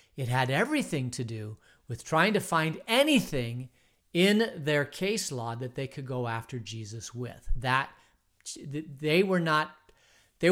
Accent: American